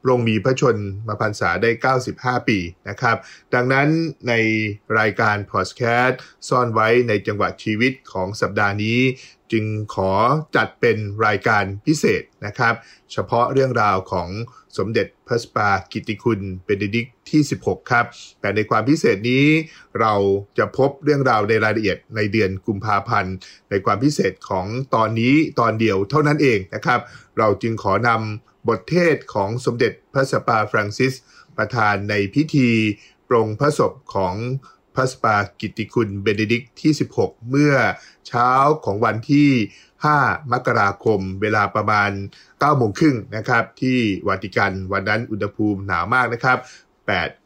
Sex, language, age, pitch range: male, English, 20-39, 105-125 Hz